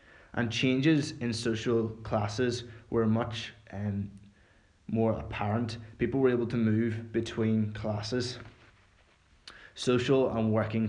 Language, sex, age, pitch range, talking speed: English, male, 20-39, 110-120 Hz, 110 wpm